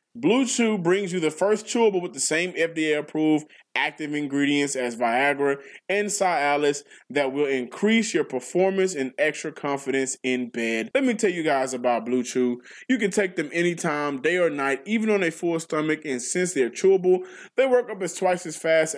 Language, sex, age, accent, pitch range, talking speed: English, male, 20-39, American, 130-185 Hz, 190 wpm